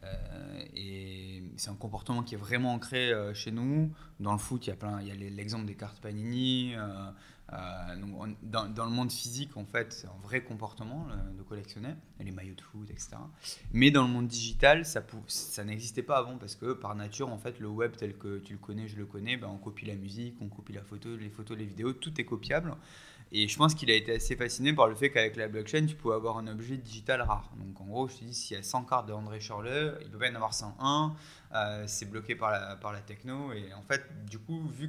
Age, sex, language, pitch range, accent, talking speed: 20-39, male, English, 105-125 Hz, French, 240 wpm